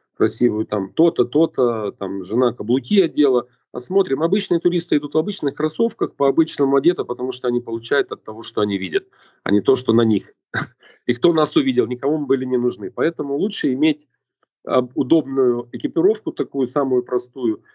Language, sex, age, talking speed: Russian, male, 40-59, 170 wpm